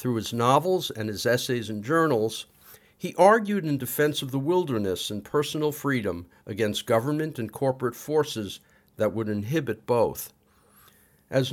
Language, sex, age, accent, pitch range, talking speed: English, male, 50-69, American, 110-150 Hz, 145 wpm